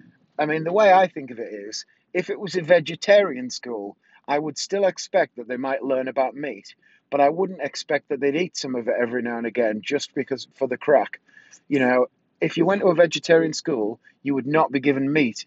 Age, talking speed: 30-49, 230 wpm